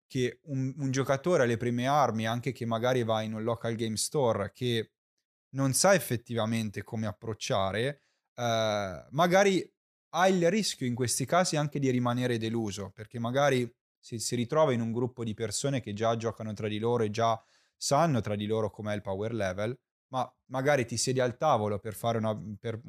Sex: male